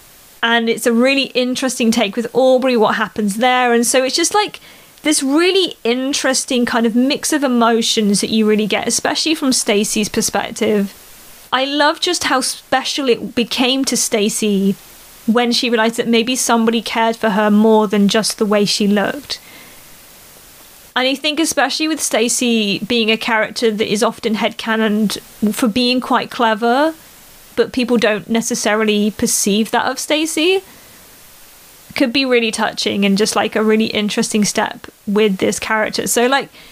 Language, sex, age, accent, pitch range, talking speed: English, female, 30-49, British, 225-285 Hz, 160 wpm